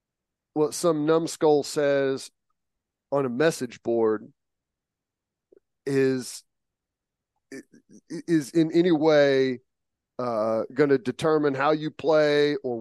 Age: 40-59